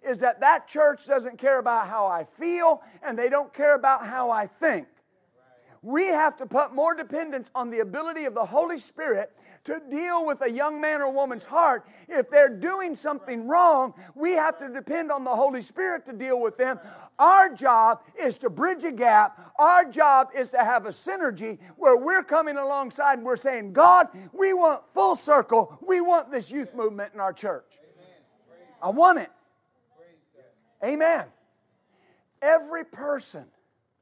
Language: English